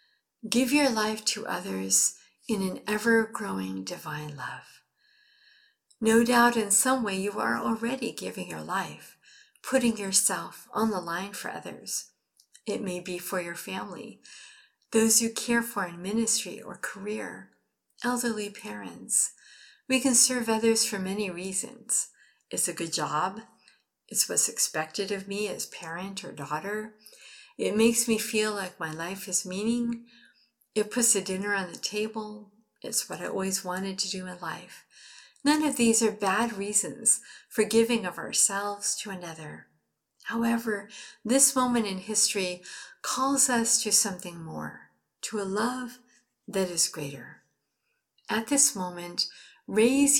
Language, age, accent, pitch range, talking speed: English, 50-69, American, 190-235 Hz, 145 wpm